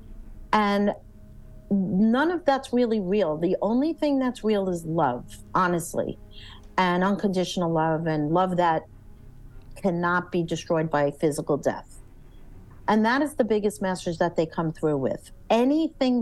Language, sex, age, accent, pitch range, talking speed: English, female, 50-69, American, 135-210 Hz, 140 wpm